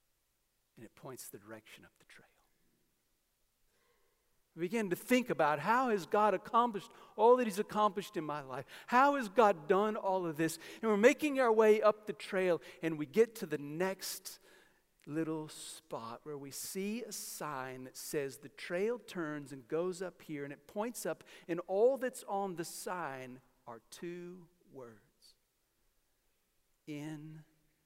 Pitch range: 145-215 Hz